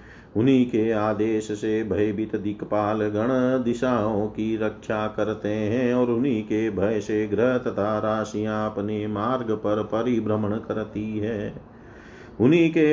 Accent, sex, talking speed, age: native, male, 130 wpm, 40-59